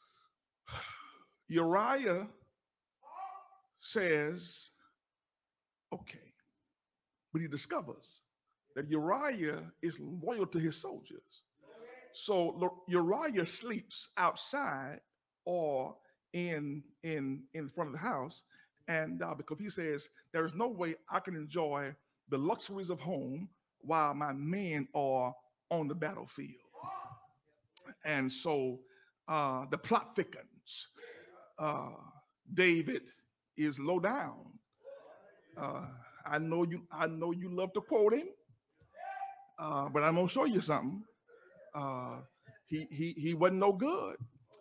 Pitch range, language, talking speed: 155-220 Hz, English, 115 wpm